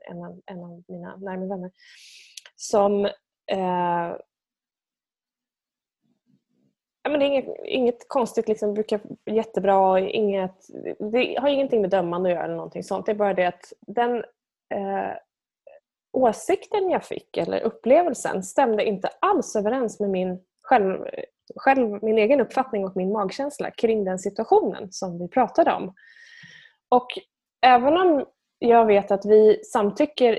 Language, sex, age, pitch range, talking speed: Swedish, female, 20-39, 185-250 Hz, 135 wpm